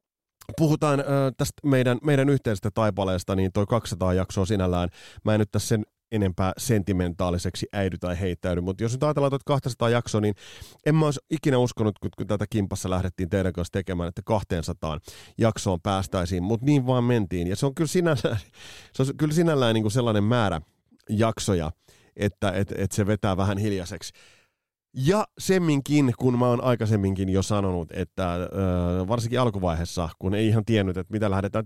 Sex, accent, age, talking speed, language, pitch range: male, native, 30-49, 170 wpm, Finnish, 95-130 Hz